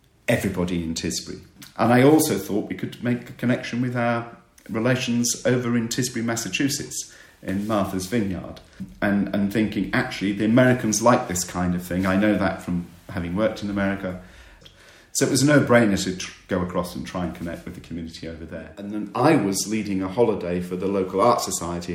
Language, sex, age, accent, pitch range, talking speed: English, male, 50-69, British, 90-105 Hz, 195 wpm